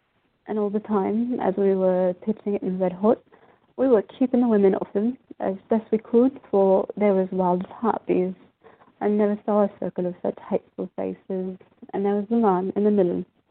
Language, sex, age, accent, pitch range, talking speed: English, female, 30-49, British, 195-230 Hz, 200 wpm